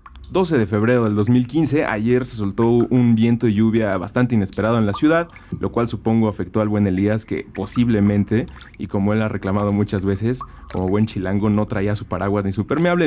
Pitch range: 100-125 Hz